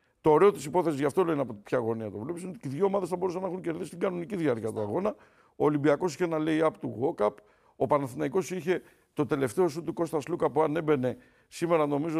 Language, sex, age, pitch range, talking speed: Greek, male, 50-69, 135-180 Hz, 230 wpm